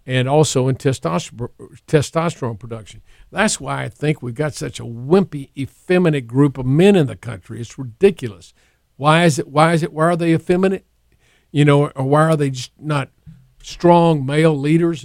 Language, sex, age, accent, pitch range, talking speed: English, male, 50-69, American, 130-160 Hz, 175 wpm